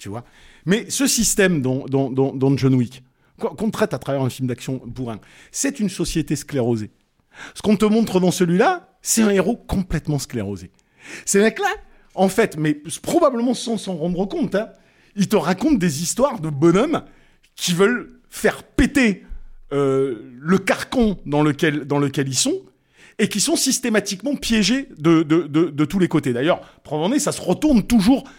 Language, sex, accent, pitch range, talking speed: French, male, French, 140-210 Hz, 175 wpm